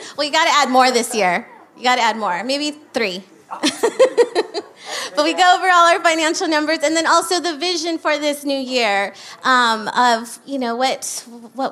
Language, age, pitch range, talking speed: English, 30-49, 250-310 Hz, 195 wpm